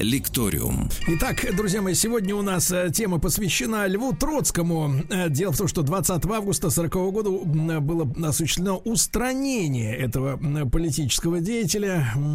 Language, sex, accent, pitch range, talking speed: Russian, male, native, 150-200 Hz, 120 wpm